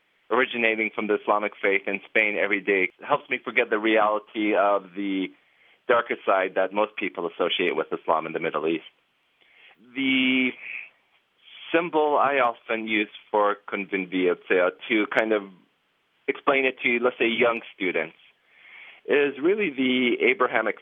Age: 30-49